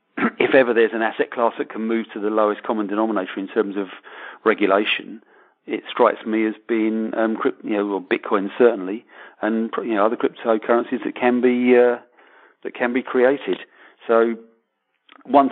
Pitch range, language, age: 100-120 Hz, English, 40-59